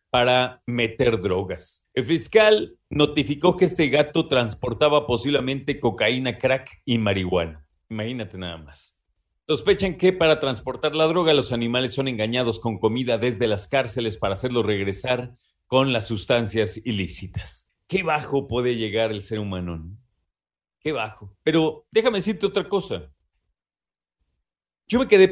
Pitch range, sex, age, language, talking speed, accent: 110-145 Hz, male, 40-59, Spanish, 135 wpm, Mexican